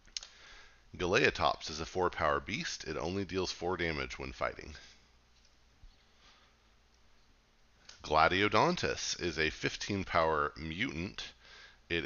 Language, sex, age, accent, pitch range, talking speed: English, male, 40-59, American, 65-85 Hz, 100 wpm